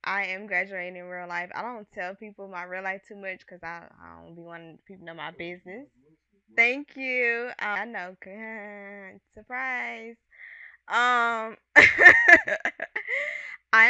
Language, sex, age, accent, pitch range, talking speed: English, female, 10-29, American, 180-235 Hz, 145 wpm